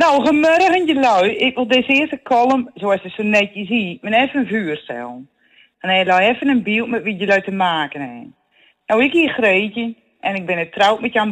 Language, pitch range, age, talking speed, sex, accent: Dutch, 180-250 Hz, 40-59, 205 wpm, female, Dutch